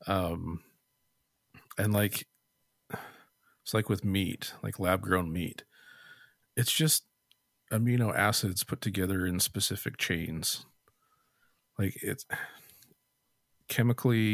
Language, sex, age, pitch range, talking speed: English, male, 40-59, 90-115 Hz, 95 wpm